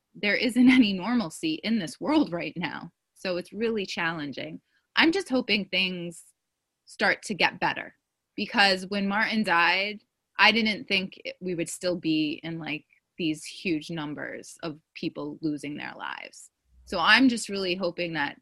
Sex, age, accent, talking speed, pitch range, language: female, 20-39, American, 155 wpm, 165-220 Hz, English